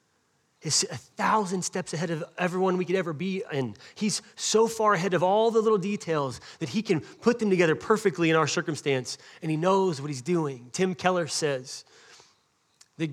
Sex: male